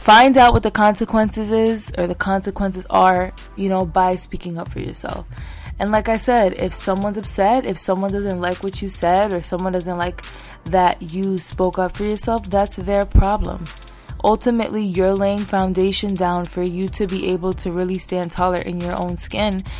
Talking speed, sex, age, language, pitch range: 190 wpm, female, 20-39, English, 185-235 Hz